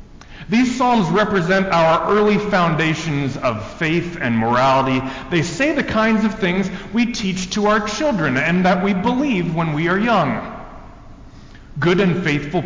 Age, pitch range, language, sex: 40-59, 160-210 Hz, English, male